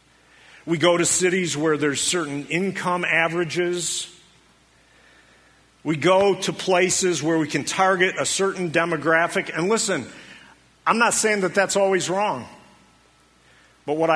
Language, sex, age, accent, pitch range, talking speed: English, male, 50-69, American, 135-185 Hz, 130 wpm